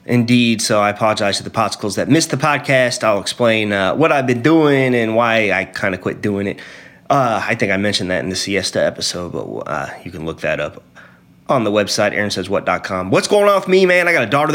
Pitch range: 105-150 Hz